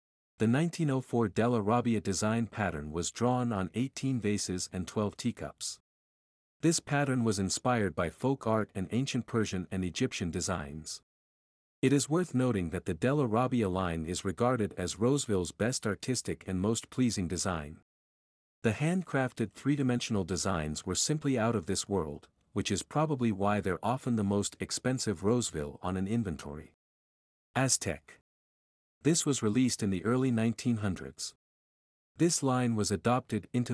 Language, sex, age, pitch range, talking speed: English, male, 50-69, 90-125 Hz, 145 wpm